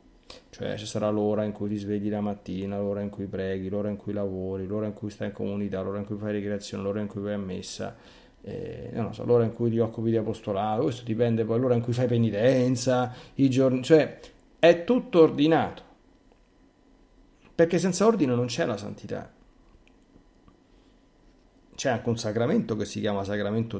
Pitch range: 105-125 Hz